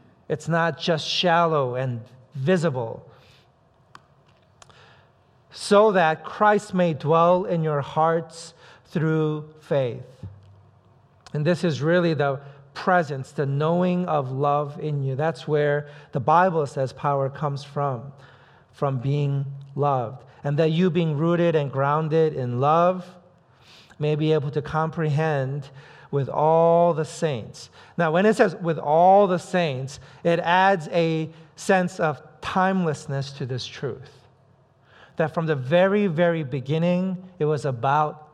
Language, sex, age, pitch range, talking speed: English, male, 40-59, 140-170 Hz, 130 wpm